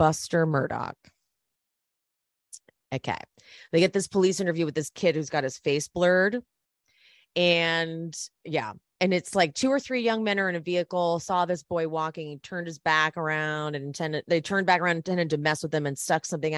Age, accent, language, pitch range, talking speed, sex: 30-49, American, English, 160-200 Hz, 195 wpm, female